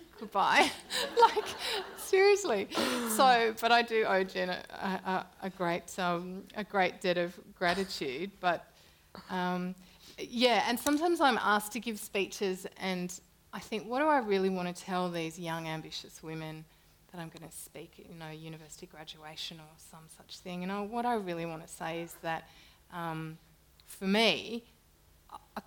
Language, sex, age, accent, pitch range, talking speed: English, female, 30-49, Australian, 170-210 Hz, 165 wpm